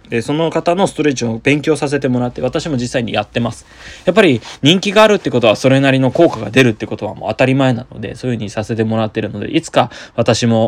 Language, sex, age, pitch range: Japanese, male, 20-39, 110-130 Hz